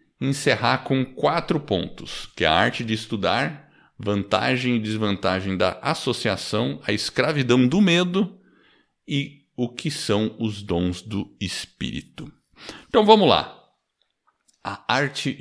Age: 60-79